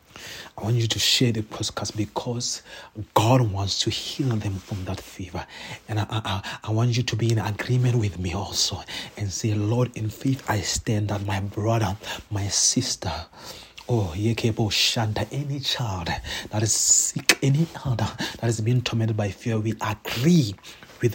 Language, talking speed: English, 175 wpm